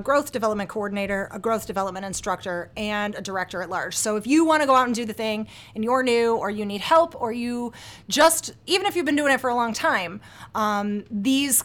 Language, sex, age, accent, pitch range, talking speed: English, female, 30-49, American, 200-245 Hz, 230 wpm